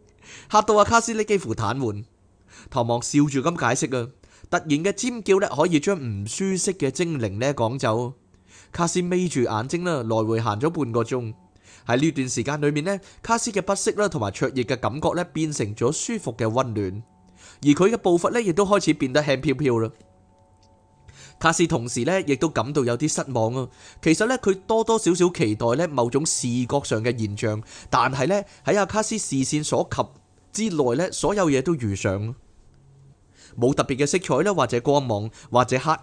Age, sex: 20-39, male